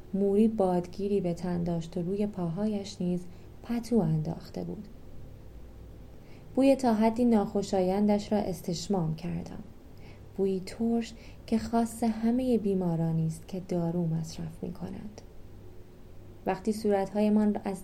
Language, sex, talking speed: Persian, female, 105 wpm